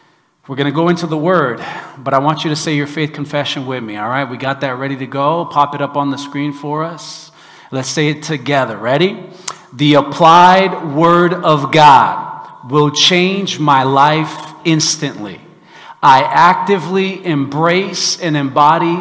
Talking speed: 170 wpm